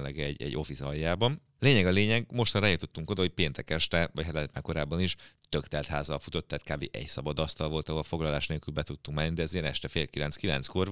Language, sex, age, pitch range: Hungarian, male, 30-49, 75-90 Hz